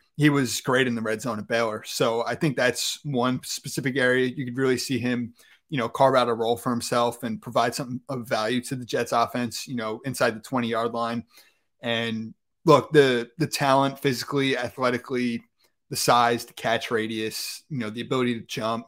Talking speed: 200 wpm